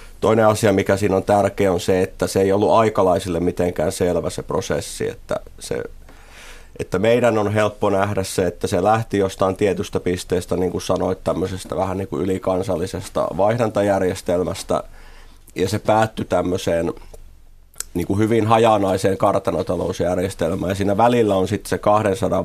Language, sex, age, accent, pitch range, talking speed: Finnish, male, 30-49, native, 90-105 Hz, 150 wpm